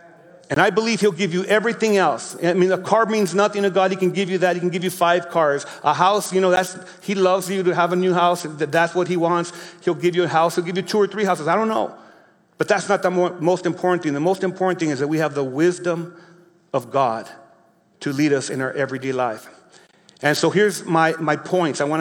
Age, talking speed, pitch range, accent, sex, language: 40-59, 255 wpm, 165-190 Hz, American, male, English